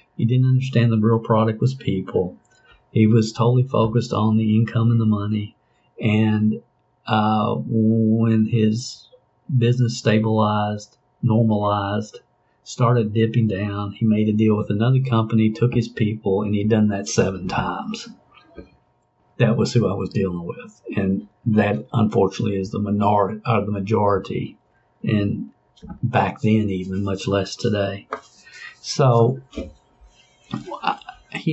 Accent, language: American, English